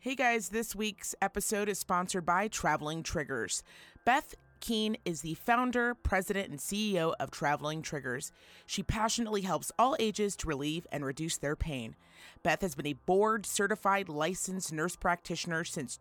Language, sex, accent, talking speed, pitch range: English, female, American, 155 wpm, 160-210 Hz